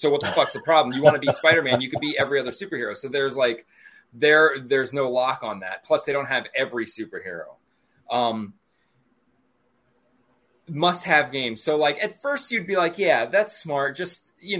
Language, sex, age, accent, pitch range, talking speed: English, male, 20-39, American, 135-205 Hz, 195 wpm